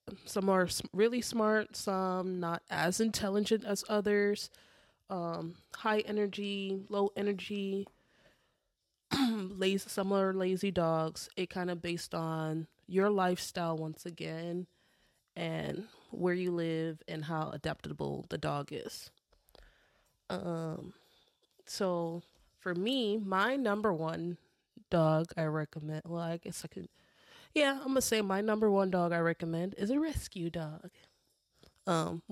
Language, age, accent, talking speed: English, 20-39, American, 130 wpm